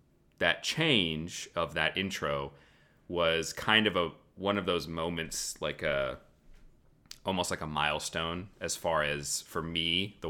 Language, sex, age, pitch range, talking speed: English, male, 30-49, 75-95 Hz, 145 wpm